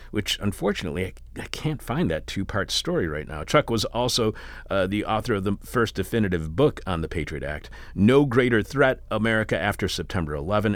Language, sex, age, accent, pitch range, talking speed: English, male, 40-59, American, 85-115 Hz, 180 wpm